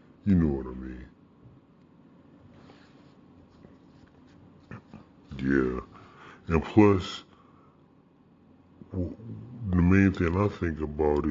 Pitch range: 75-95 Hz